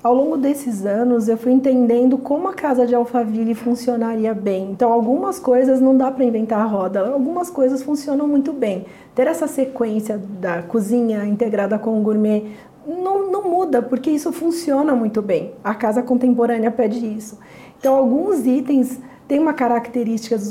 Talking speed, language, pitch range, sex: 165 wpm, Portuguese, 220-260 Hz, female